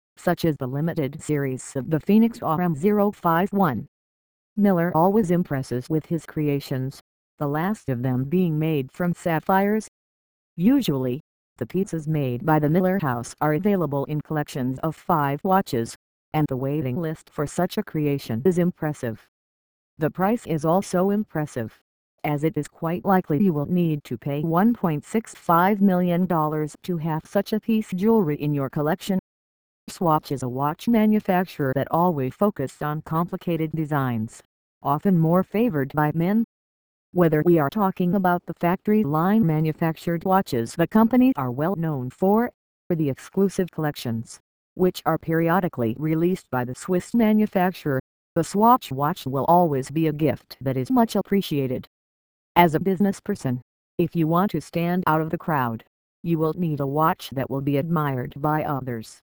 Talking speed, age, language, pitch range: 155 wpm, 50-69, English, 140-185 Hz